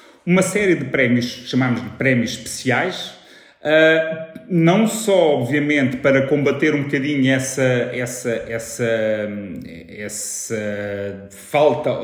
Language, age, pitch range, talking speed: Portuguese, 30-49, 120-155 Hz, 100 wpm